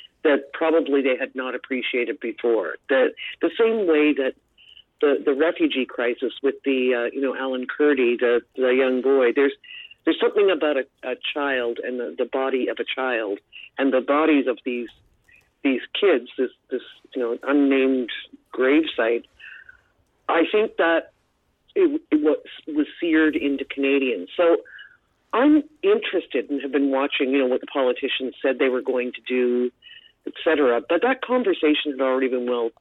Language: English